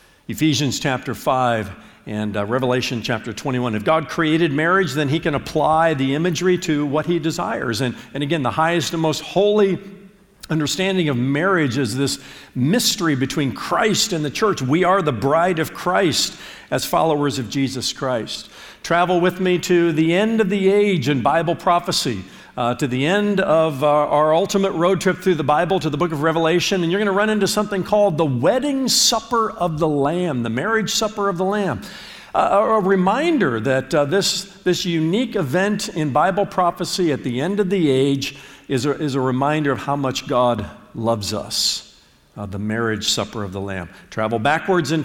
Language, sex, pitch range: English, male, 135-190 Hz